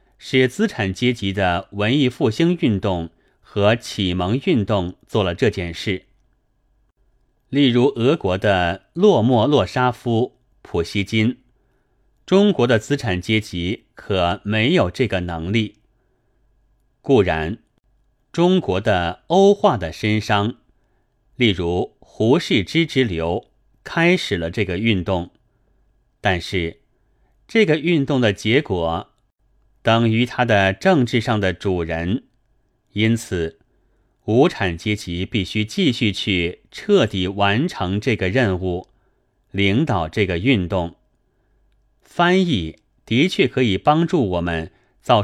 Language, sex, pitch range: Chinese, male, 95-125 Hz